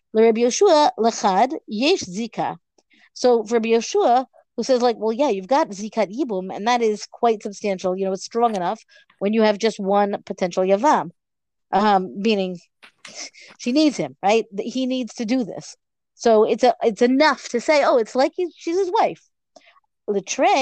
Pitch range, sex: 195-250 Hz, female